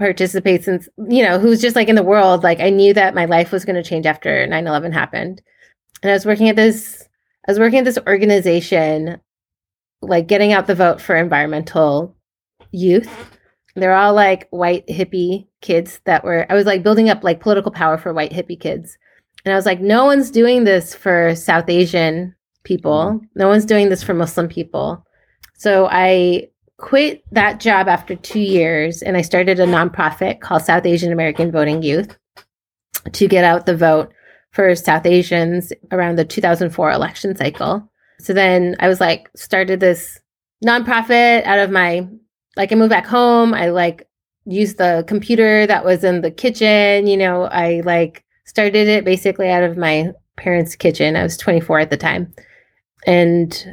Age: 30-49